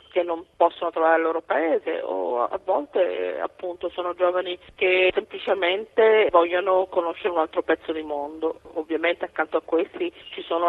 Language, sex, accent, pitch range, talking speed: Italian, female, native, 165-210 Hz, 165 wpm